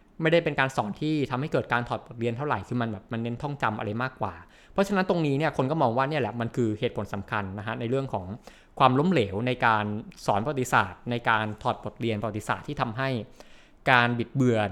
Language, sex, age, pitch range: Thai, male, 20-39, 115-160 Hz